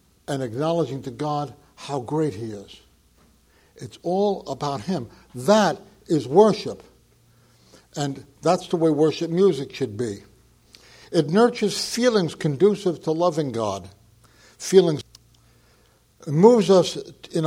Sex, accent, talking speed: male, American, 120 wpm